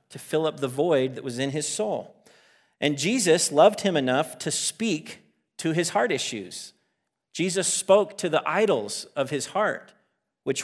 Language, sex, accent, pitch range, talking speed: English, male, American, 135-180 Hz, 170 wpm